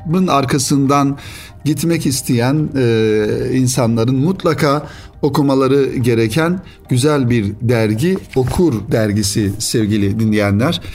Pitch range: 110-155 Hz